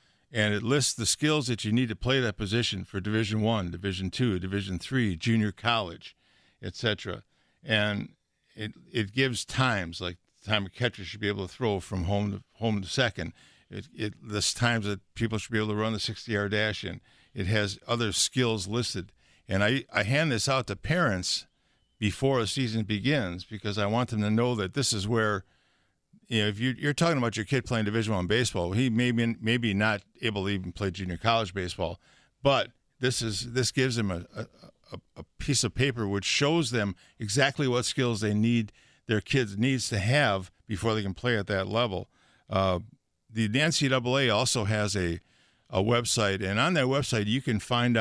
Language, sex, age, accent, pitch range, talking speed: English, male, 60-79, American, 100-125 Hz, 195 wpm